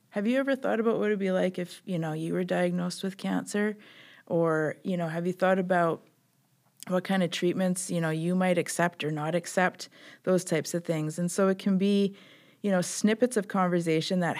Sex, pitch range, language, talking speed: female, 165-190 Hz, English, 215 wpm